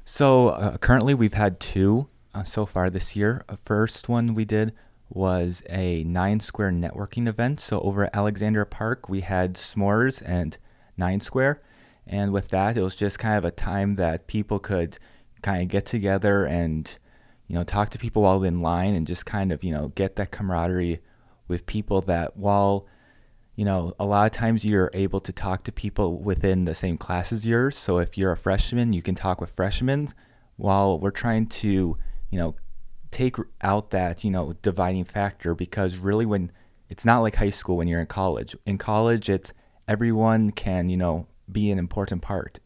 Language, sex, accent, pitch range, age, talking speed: English, male, American, 90-110 Hz, 30-49, 190 wpm